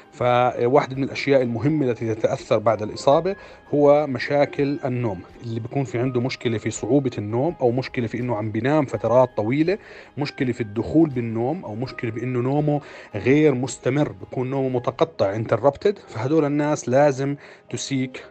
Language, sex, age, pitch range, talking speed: Arabic, male, 30-49, 115-140 Hz, 145 wpm